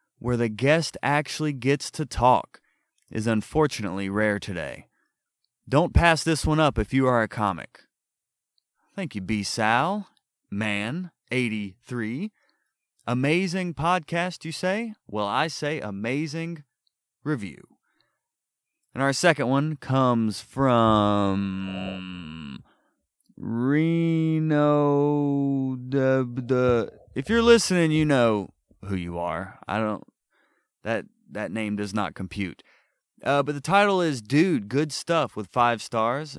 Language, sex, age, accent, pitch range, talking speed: English, male, 30-49, American, 105-155 Hz, 115 wpm